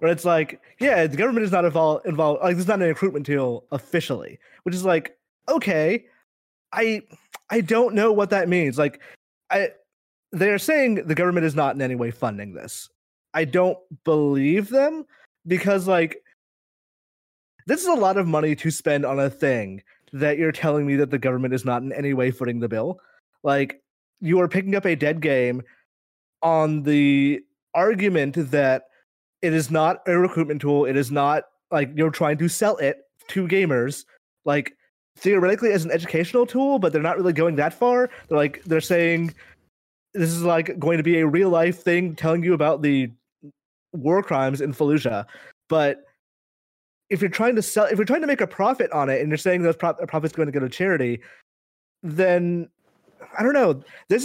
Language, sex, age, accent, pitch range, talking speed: English, male, 20-39, American, 145-190 Hz, 185 wpm